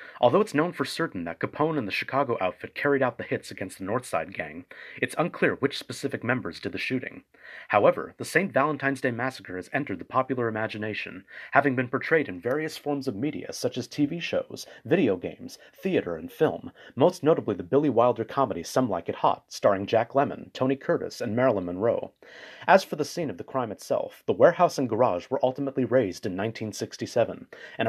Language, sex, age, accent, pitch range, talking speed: English, male, 30-49, American, 110-140 Hz, 195 wpm